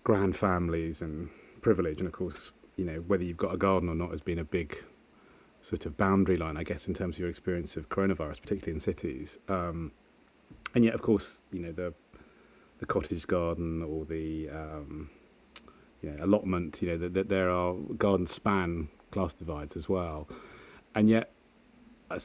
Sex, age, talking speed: male, 30-49, 185 wpm